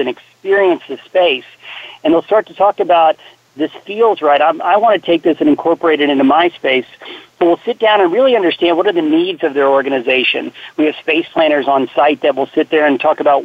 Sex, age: male, 40-59